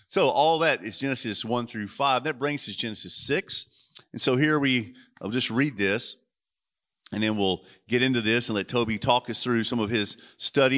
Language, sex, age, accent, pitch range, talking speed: English, male, 40-59, American, 100-135 Hz, 205 wpm